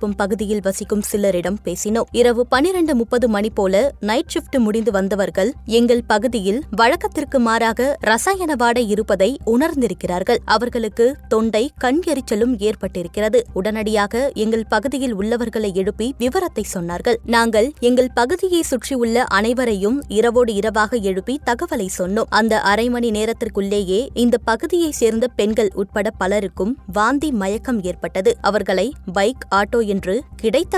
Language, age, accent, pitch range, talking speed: Tamil, 20-39, native, 205-255 Hz, 115 wpm